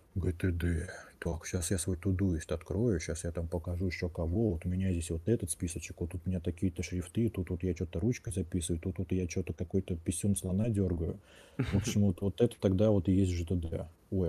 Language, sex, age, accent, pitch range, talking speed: Russian, male, 20-39, native, 90-105 Hz, 215 wpm